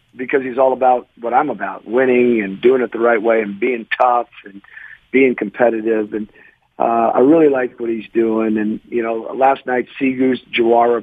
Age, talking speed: 50-69, 190 wpm